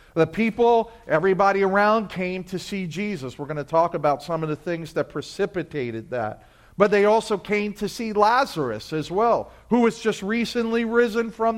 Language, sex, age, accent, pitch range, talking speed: English, male, 50-69, American, 130-200 Hz, 180 wpm